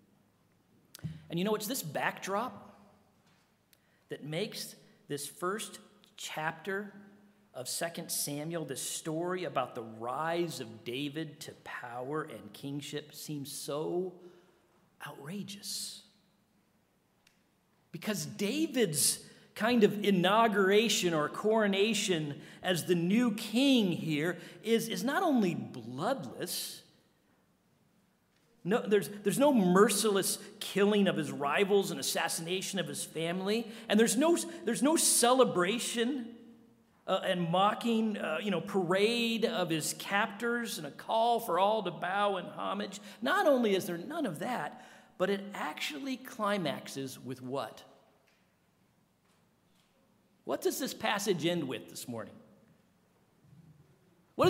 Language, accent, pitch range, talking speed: English, American, 170-220 Hz, 115 wpm